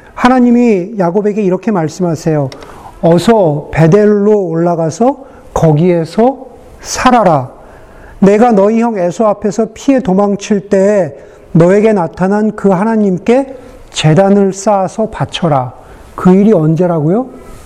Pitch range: 185-255 Hz